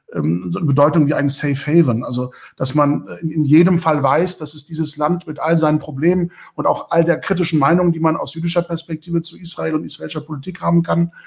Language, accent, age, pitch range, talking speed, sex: German, German, 50-69, 135-160 Hz, 215 wpm, male